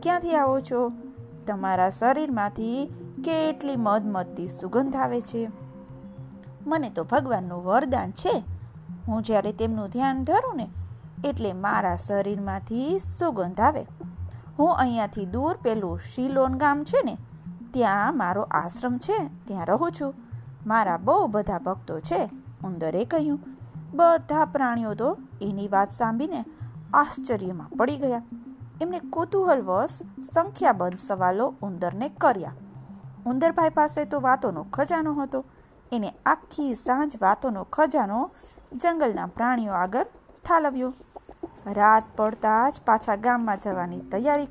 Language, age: Gujarati, 20-39